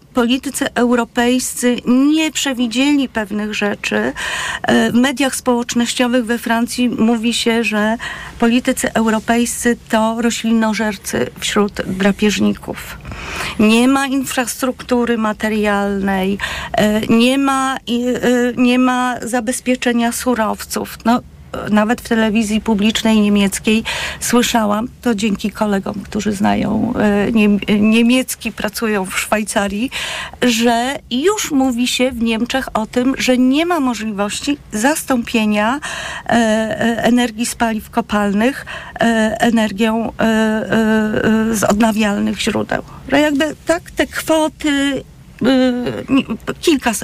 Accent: native